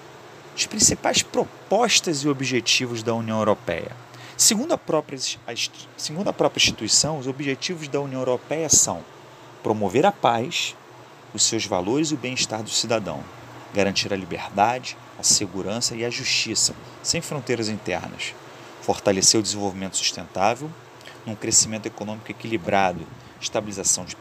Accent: Brazilian